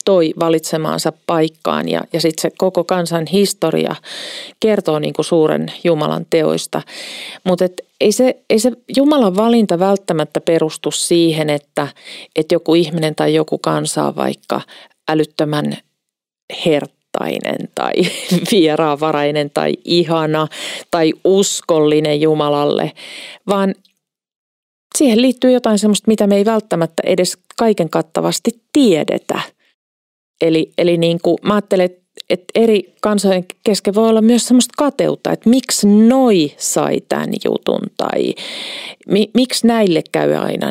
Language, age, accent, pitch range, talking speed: Finnish, 40-59, native, 160-230 Hz, 115 wpm